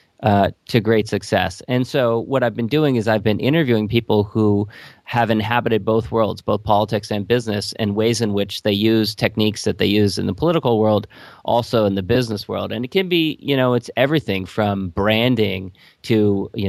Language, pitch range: English, 100-115 Hz